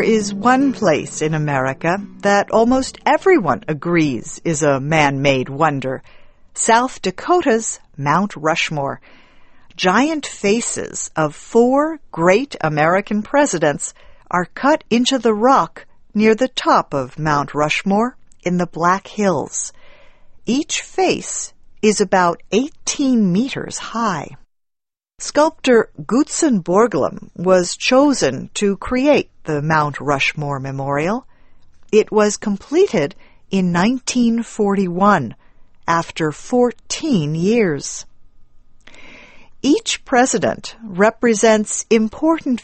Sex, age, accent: female, 50-69, American